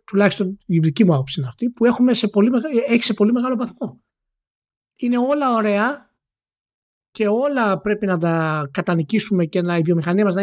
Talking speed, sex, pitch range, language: 185 wpm, male, 175-245 Hz, Greek